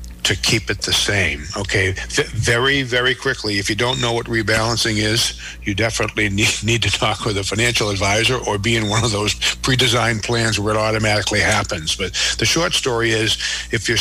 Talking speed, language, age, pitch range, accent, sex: 195 wpm, English, 60-79, 100-120 Hz, American, male